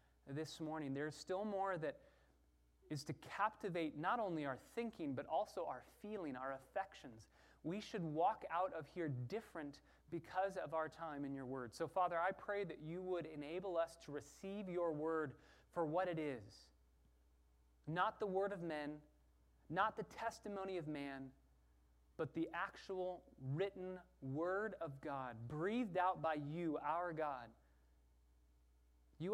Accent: American